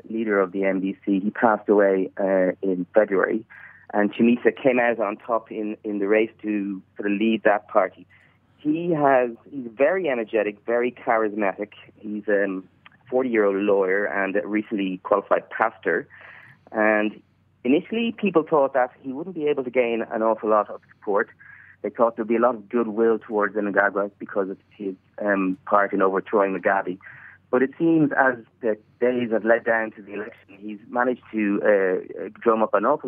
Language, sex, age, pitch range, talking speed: English, male, 30-49, 100-125 Hz, 175 wpm